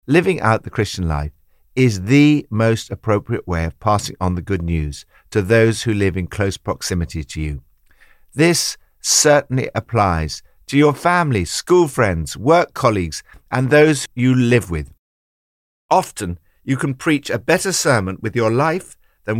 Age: 50-69